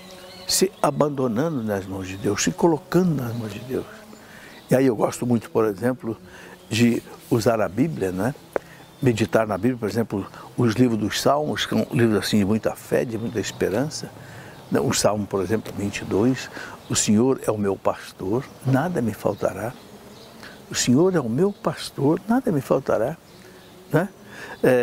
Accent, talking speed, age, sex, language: Brazilian, 160 wpm, 60-79, male, Portuguese